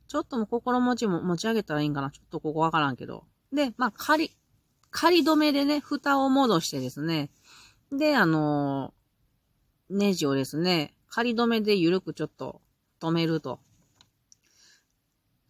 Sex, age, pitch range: female, 40-59, 145-230 Hz